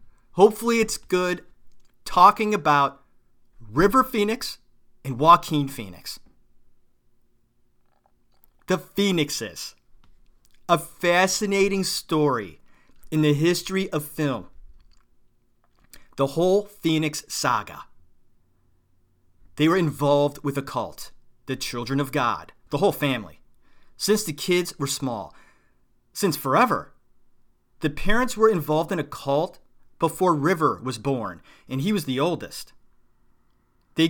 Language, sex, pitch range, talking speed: English, male, 130-170 Hz, 105 wpm